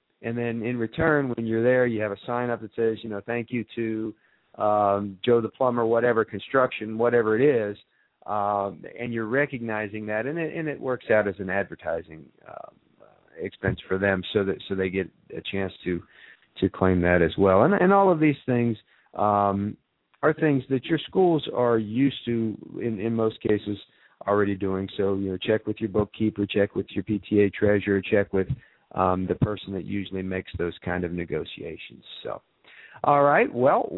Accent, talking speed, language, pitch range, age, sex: American, 190 wpm, English, 100-125 Hz, 50-69, male